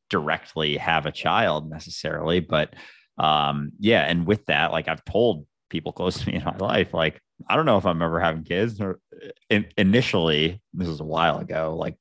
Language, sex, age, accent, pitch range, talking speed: English, male, 30-49, American, 85-125 Hz, 195 wpm